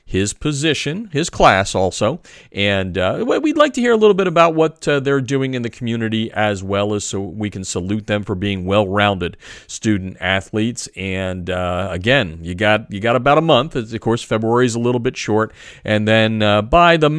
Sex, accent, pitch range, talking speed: male, American, 95-120 Hz, 205 wpm